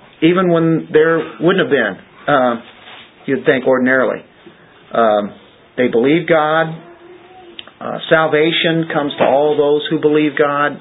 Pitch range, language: 125-150 Hz, English